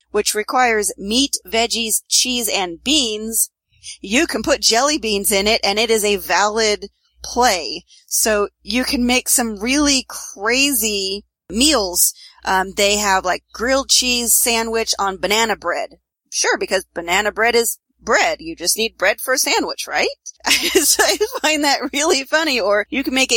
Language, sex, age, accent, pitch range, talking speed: English, female, 40-59, American, 200-270 Hz, 155 wpm